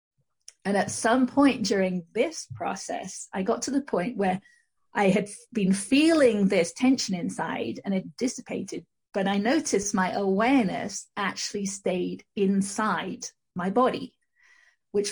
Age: 40-59